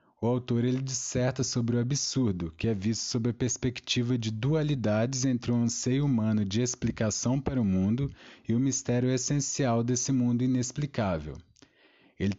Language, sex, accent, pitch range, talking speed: Portuguese, male, Brazilian, 110-125 Hz, 150 wpm